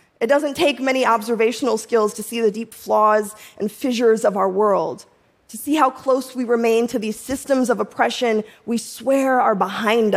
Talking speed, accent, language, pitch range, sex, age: 185 wpm, American, English, 225-275 Hz, female, 20-39